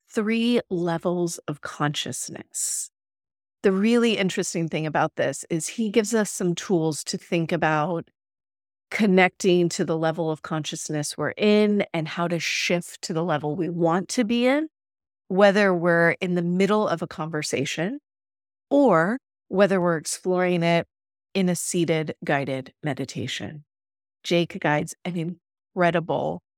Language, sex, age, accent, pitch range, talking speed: English, female, 30-49, American, 155-195 Hz, 140 wpm